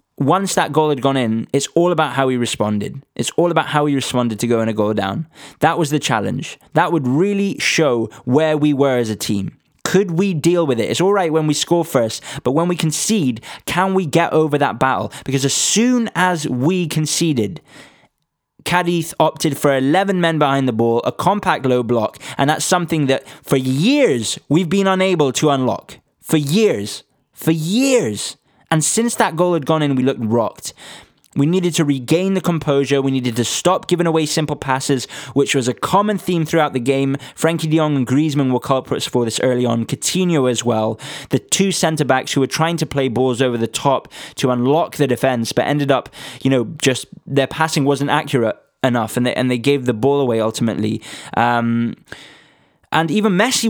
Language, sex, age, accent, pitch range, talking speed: English, male, 20-39, British, 125-165 Hz, 200 wpm